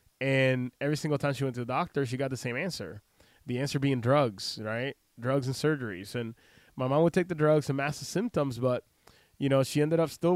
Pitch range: 120-140 Hz